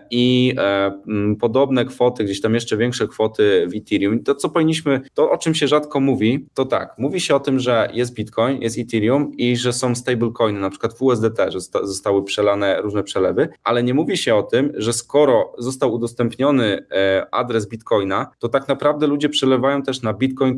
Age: 20-39